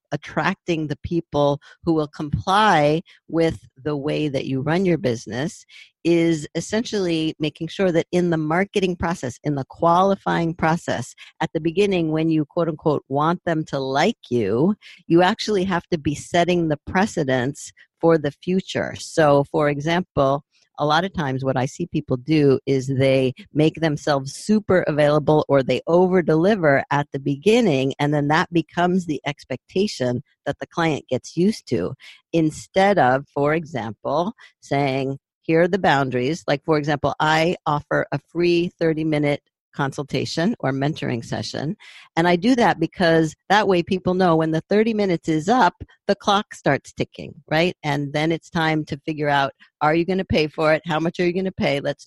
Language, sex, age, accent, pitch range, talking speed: English, female, 50-69, American, 145-175 Hz, 175 wpm